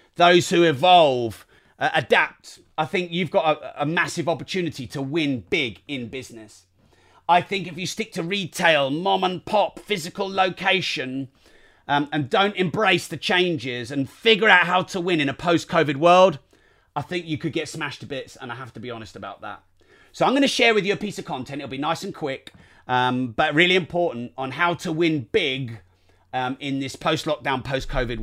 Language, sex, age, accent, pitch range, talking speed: English, male, 30-49, British, 120-170 Hz, 195 wpm